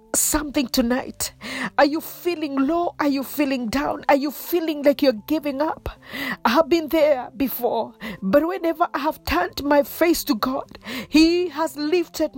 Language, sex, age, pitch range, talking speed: English, female, 40-59, 275-330 Hz, 165 wpm